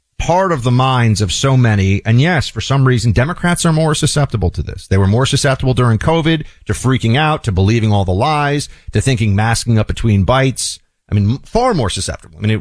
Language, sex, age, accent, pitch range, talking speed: English, male, 40-59, American, 95-125 Hz, 220 wpm